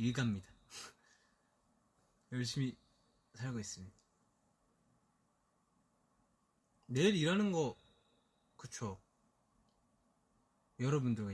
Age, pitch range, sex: 20-39, 110-145 Hz, male